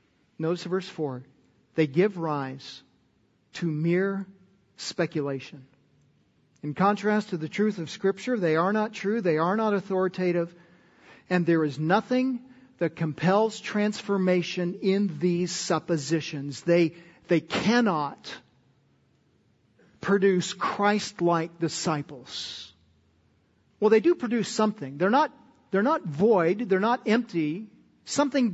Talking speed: 110 wpm